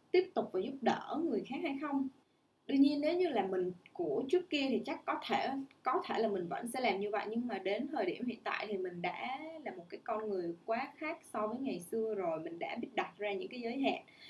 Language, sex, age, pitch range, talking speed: Vietnamese, female, 10-29, 200-295 Hz, 260 wpm